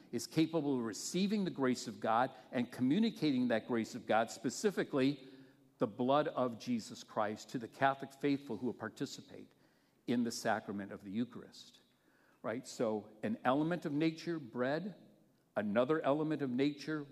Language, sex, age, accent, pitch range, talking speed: English, male, 50-69, American, 115-160 Hz, 155 wpm